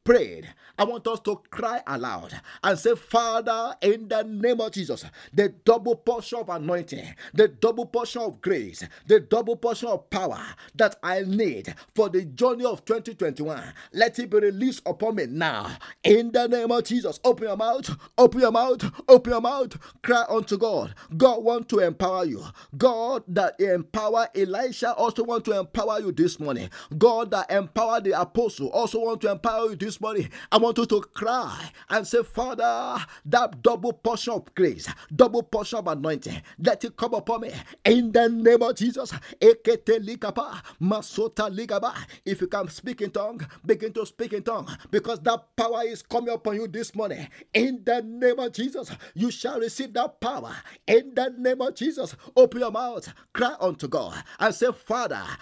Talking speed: 175 wpm